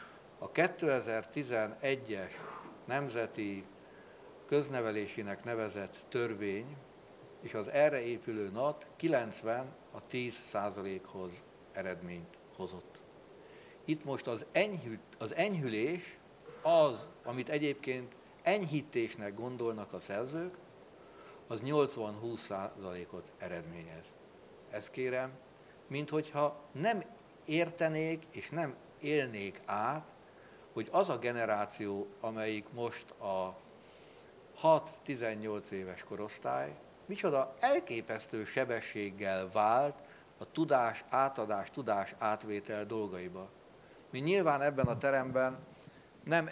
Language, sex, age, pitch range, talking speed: Hungarian, male, 60-79, 105-140 Hz, 90 wpm